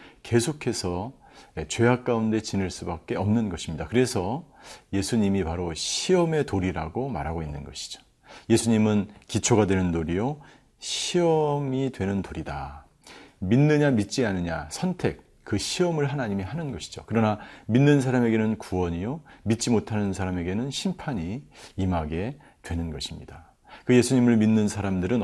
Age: 40-59